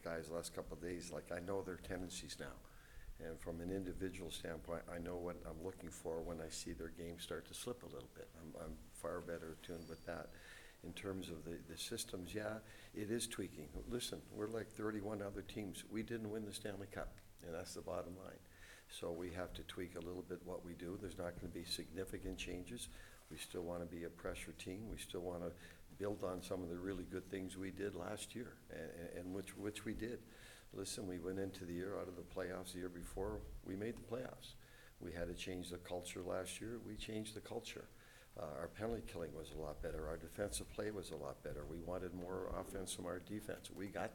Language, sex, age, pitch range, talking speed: English, male, 60-79, 85-105 Hz, 230 wpm